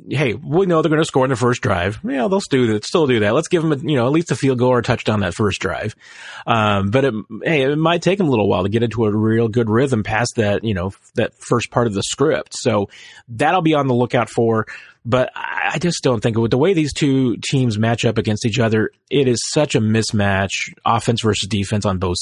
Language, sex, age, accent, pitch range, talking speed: English, male, 30-49, American, 105-140 Hz, 255 wpm